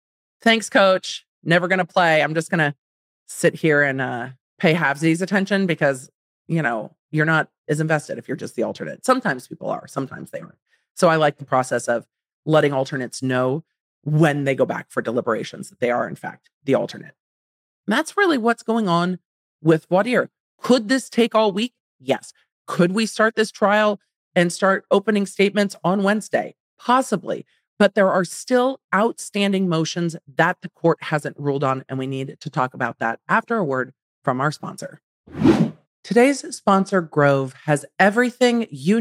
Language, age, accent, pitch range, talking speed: English, 40-59, American, 145-200 Hz, 175 wpm